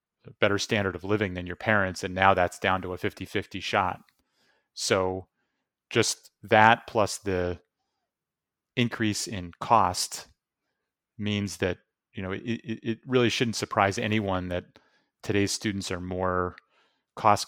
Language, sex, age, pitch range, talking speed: English, male, 30-49, 90-105 Hz, 135 wpm